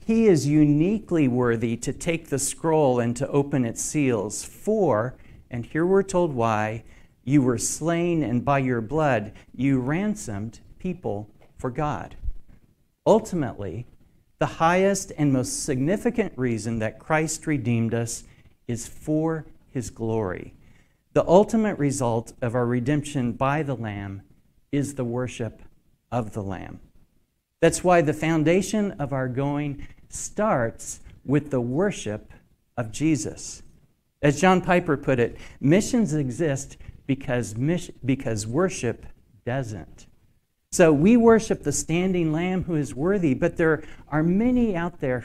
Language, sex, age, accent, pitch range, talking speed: English, male, 50-69, American, 115-165 Hz, 135 wpm